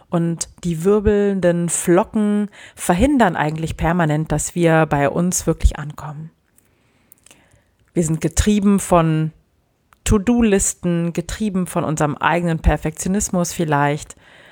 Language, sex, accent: German, female, German